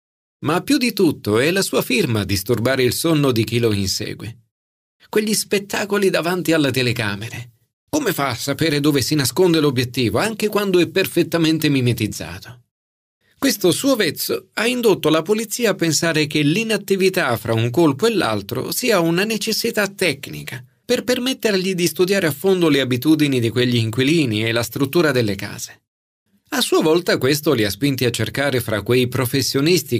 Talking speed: 165 wpm